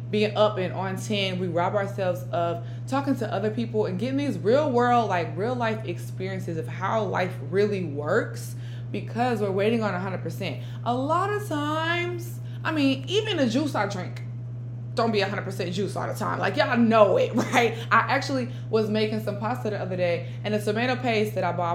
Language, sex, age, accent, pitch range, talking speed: English, female, 20-39, American, 115-125 Hz, 195 wpm